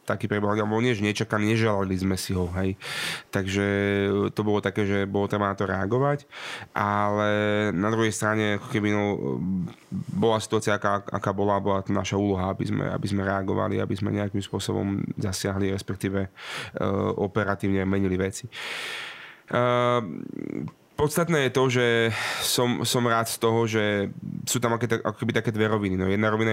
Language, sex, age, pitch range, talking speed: Slovak, male, 30-49, 100-115 Hz, 155 wpm